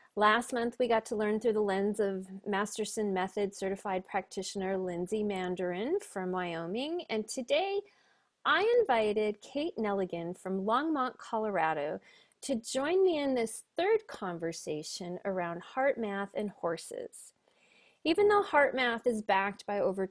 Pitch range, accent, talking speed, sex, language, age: 185-260 Hz, American, 140 wpm, female, English, 30-49